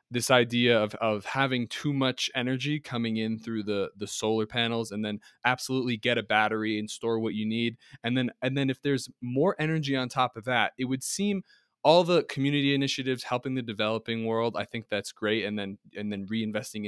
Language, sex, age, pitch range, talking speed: English, male, 20-39, 105-130 Hz, 205 wpm